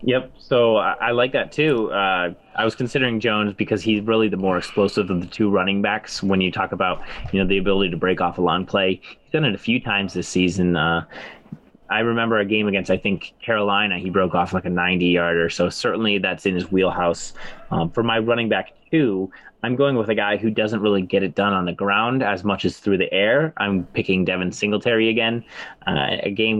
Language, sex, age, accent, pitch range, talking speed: English, male, 20-39, American, 95-110 Hz, 225 wpm